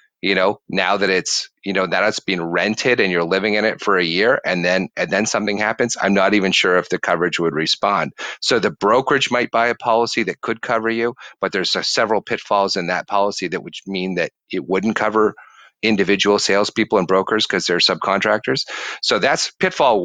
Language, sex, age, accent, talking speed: English, male, 40-59, American, 205 wpm